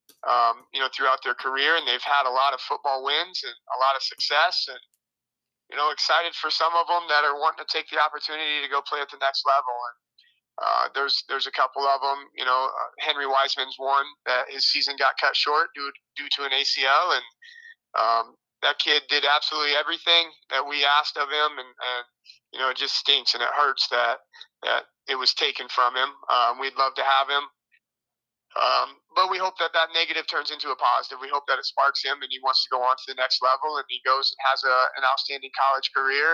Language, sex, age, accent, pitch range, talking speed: English, male, 30-49, American, 135-155 Hz, 230 wpm